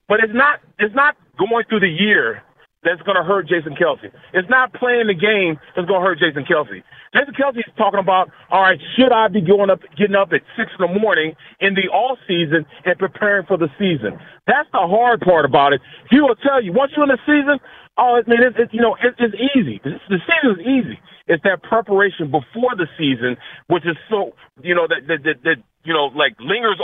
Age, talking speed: 40-59, 230 wpm